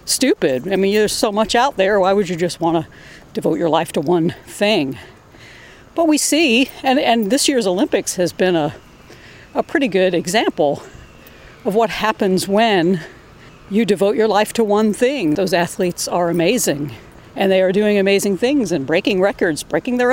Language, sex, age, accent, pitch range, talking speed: English, female, 50-69, American, 175-220 Hz, 180 wpm